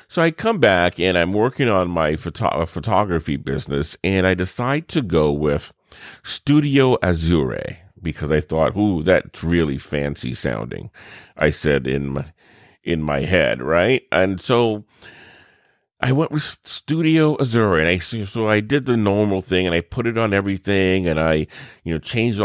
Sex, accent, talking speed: male, American, 165 wpm